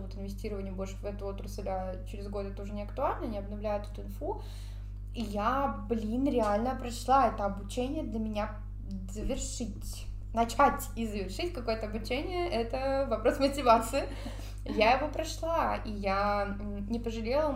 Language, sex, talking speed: Russian, female, 145 wpm